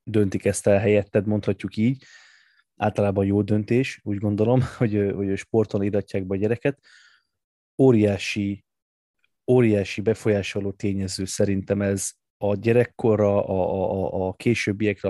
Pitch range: 100-115 Hz